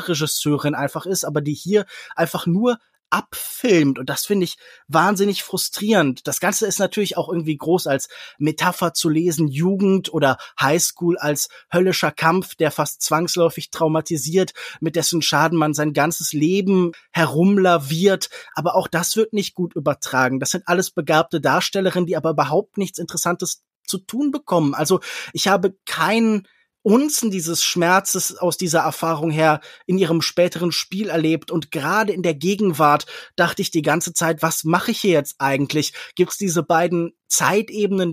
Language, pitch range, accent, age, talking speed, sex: German, 160-195 Hz, German, 20-39, 160 wpm, male